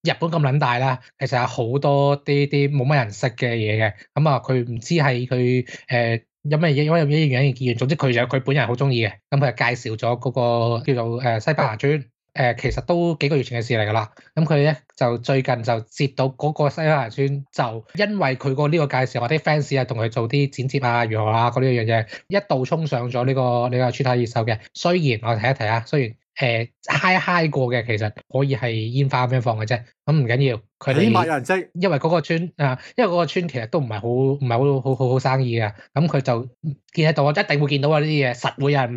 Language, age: English, 20-39